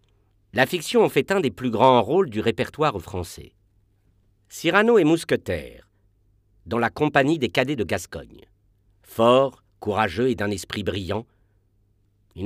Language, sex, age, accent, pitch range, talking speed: French, male, 50-69, French, 100-120 Hz, 140 wpm